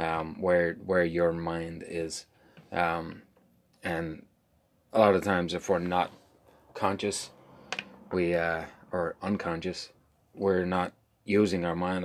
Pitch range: 85-100 Hz